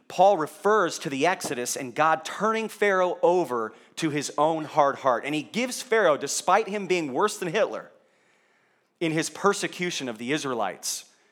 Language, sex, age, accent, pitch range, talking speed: English, male, 30-49, American, 135-185 Hz, 165 wpm